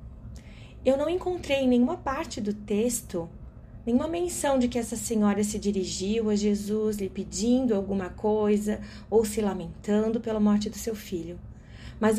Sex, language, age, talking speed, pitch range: female, Portuguese, 30-49, 155 wpm, 205-245 Hz